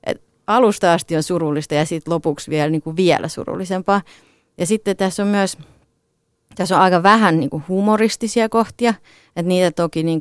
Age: 30-49